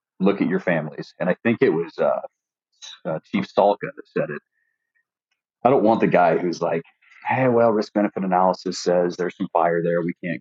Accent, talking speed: American, 195 wpm